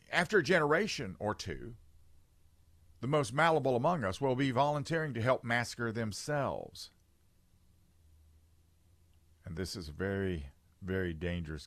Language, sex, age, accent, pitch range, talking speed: English, male, 50-69, American, 90-130 Hz, 125 wpm